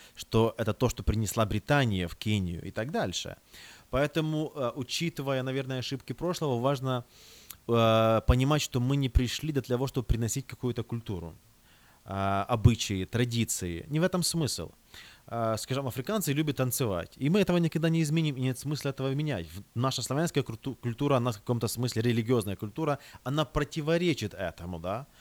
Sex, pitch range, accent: male, 110-140 Hz, native